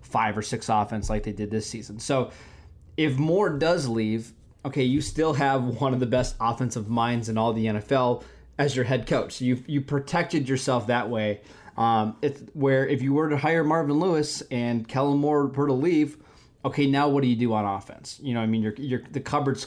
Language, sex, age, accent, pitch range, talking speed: English, male, 20-39, American, 110-140 Hz, 215 wpm